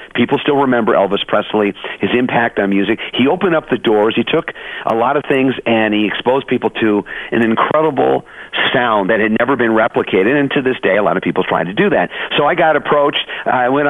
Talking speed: 220 wpm